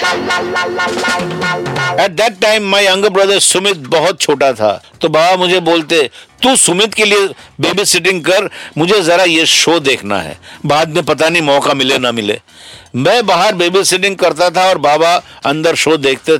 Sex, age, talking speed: male, 50-69, 165 wpm